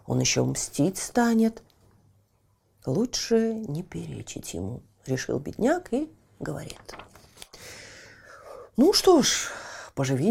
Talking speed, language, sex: 95 wpm, Russian, female